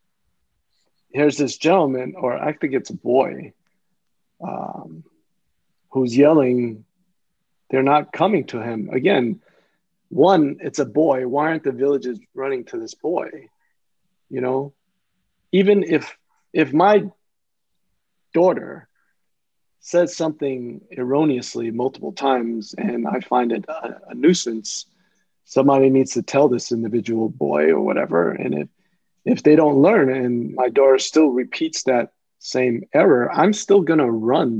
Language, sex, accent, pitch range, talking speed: English, male, American, 125-175 Hz, 135 wpm